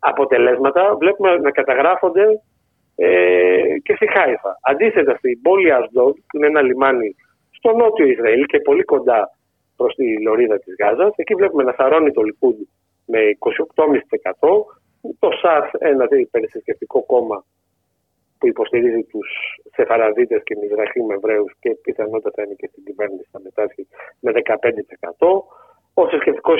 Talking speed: 135 wpm